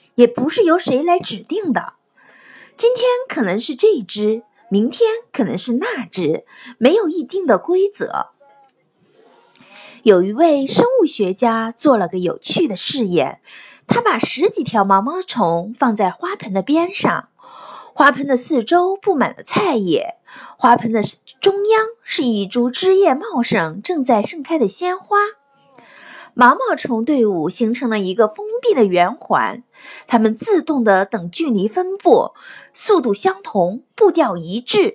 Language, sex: Chinese, female